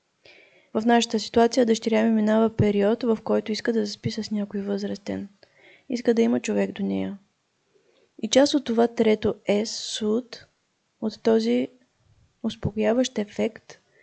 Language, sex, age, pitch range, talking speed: Bulgarian, female, 20-39, 205-235 Hz, 135 wpm